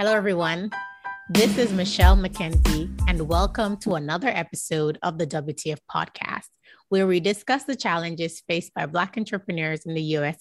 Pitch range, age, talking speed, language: 160-200 Hz, 30-49, 155 wpm, English